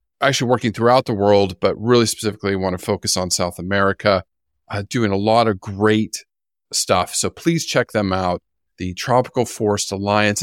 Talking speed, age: 175 wpm, 40-59